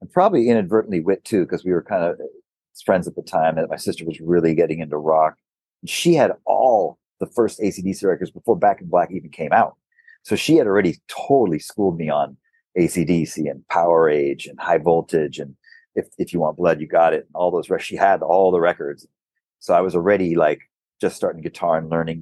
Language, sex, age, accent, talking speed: English, male, 40-59, American, 215 wpm